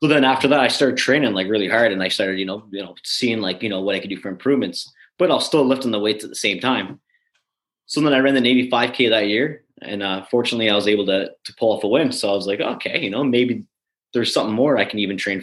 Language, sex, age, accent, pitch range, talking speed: English, male, 20-39, American, 105-130 Hz, 285 wpm